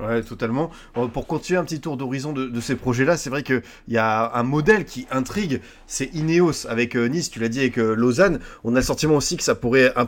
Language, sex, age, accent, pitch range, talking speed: French, male, 30-49, French, 115-145 Hz, 240 wpm